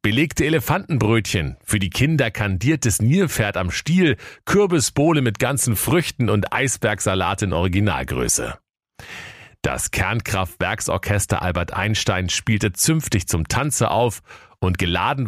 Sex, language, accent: male, German, German